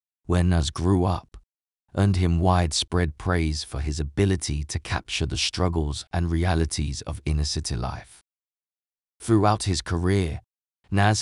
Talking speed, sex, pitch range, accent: 135 wpm, male, 75-95 Hz, British